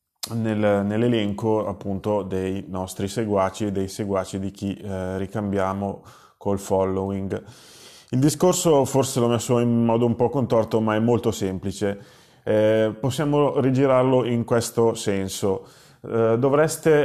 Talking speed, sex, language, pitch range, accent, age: 125 wpm, male, Italian, 105-135 Hz, native, 30-49